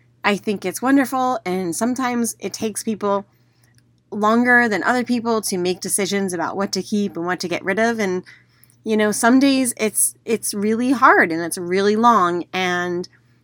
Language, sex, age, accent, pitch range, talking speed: English, female, 30-49, American, 170-235 Hz, 180 wpm